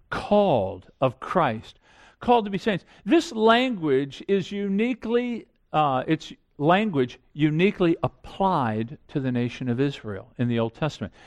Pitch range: 150-225 Hz